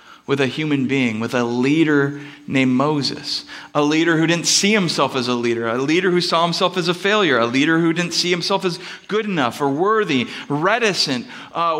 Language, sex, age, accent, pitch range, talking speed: English, male, 40-59, American, 145-195 Hz, 200 wpm